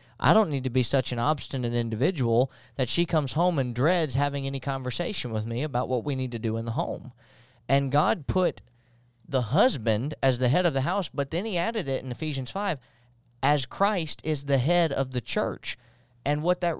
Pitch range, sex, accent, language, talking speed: 120-155 Hz, male, American, English, 210 wpm